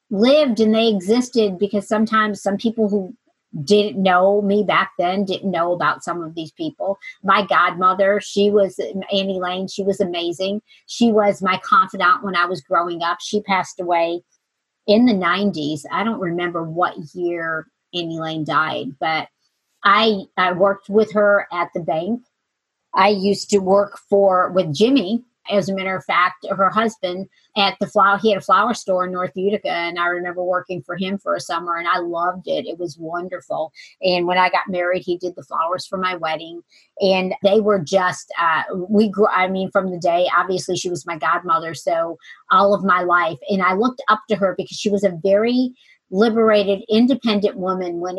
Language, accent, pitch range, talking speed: English, American, 175-205 Hz, 190 wpm